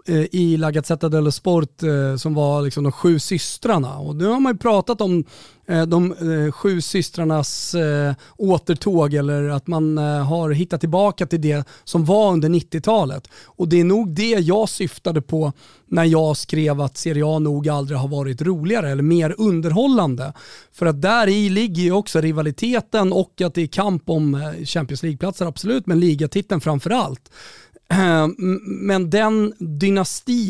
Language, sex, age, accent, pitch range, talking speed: Swedish, male, 30-49, native, 150-185 Hz, 150 wpm